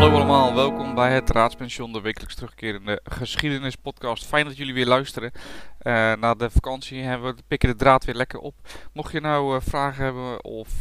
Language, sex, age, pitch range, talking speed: Dutch, male, 20-39, 105-130 Hz, 185 wpm